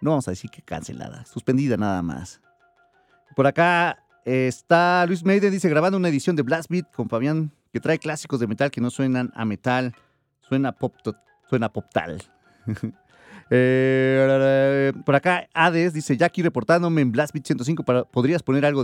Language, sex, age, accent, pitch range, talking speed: Spanish, male, 30-49, Mexican, 115-150 Hz, 160 wpm